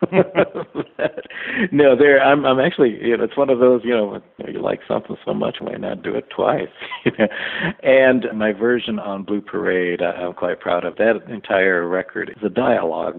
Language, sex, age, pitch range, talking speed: English, male, 60-79, 90-110 Hz, 190 wpm